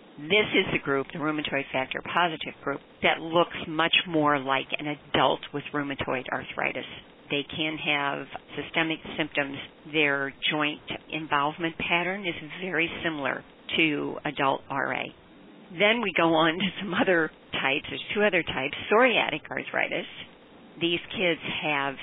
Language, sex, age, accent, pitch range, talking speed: English, female, 50-69, American, 145-185 Hz, 140 wpm